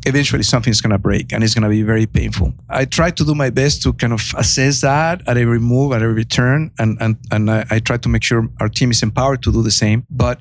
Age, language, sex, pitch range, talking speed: 50-69, English, male, 115-135 Hz, 270 wpm